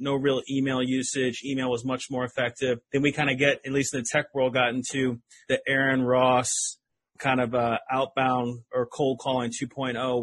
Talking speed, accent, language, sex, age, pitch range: 195 wpm, American, English, male, 30-49, 120-135 Hz